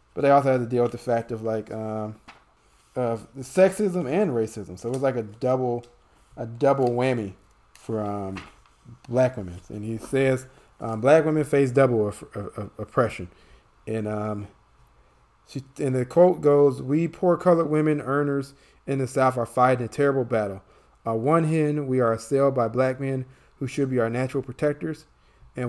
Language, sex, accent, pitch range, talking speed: English, male, American, 110-140 Hz, 180 wpm